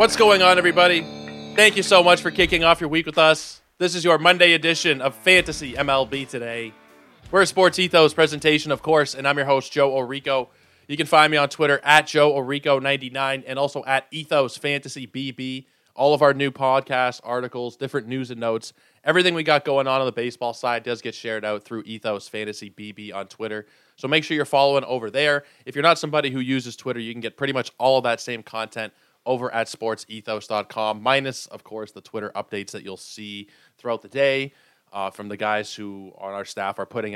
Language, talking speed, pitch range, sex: English, 205 wpm, 105-145 Hz, male